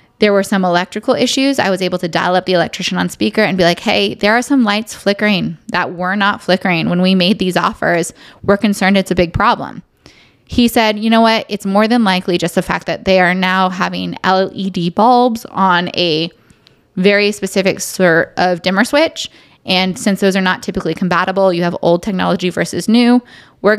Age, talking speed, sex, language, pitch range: 20-39, 200 wpm, female, English, 180-235 Hz